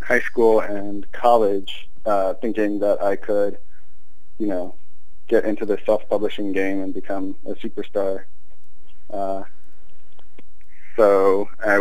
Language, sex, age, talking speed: English, male, 20-39, 115 wpm